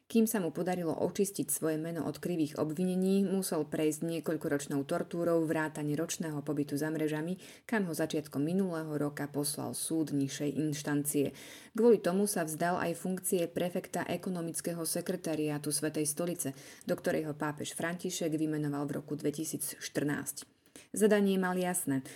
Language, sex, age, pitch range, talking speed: Slovak, female, 30-49, 150-180 Hz, 135 wpm